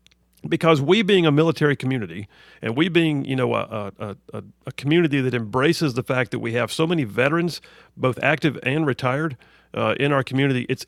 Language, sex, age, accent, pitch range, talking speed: English, male, 50-69, American, 115-145 Hz, 195 wpm